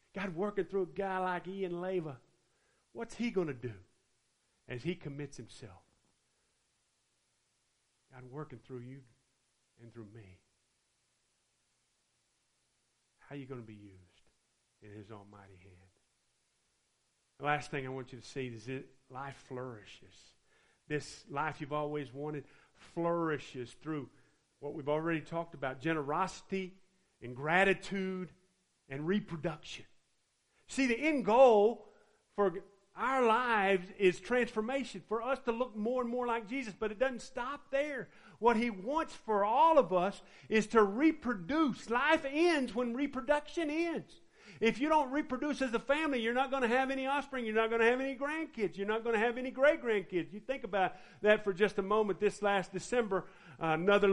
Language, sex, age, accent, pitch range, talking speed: English, male, 40-59, American, 135-220 Hz, 155 wpm